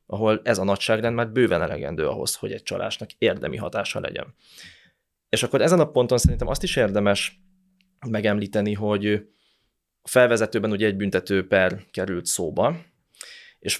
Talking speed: 145 wpm